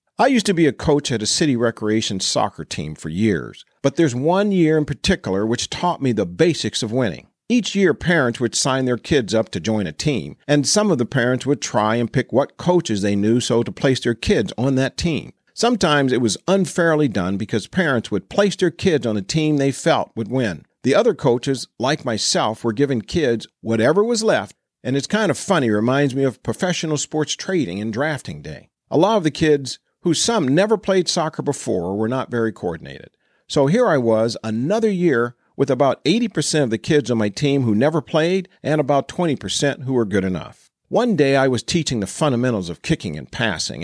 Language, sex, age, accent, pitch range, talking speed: English, male, 50-69, American, 115-170 Hz, 210 wpm